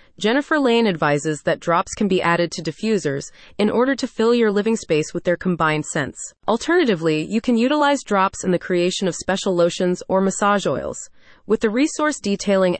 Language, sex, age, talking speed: English, female, 30-49, 185 wpm